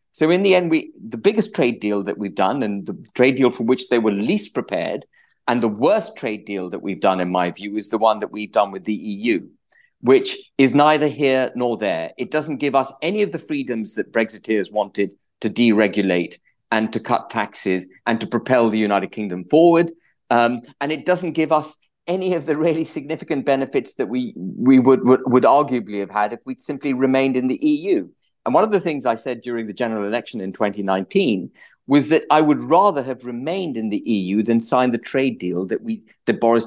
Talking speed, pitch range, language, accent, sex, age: 220 wpm, 110-155 Hz, English, British, male, 40-59